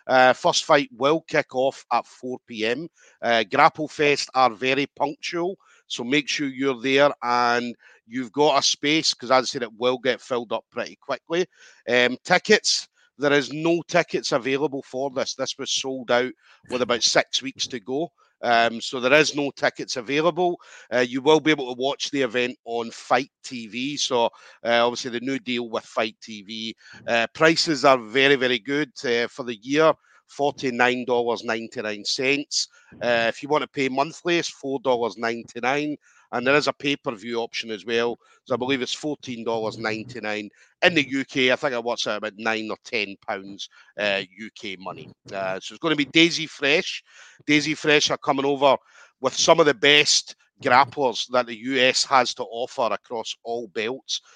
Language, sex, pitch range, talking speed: English, male, 115-145 Hz, 170 wpm